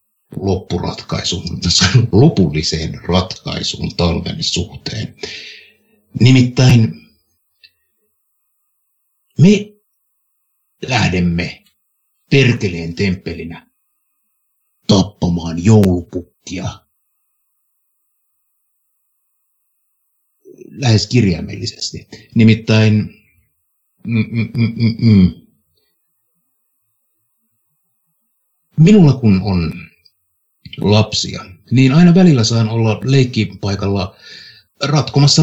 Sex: male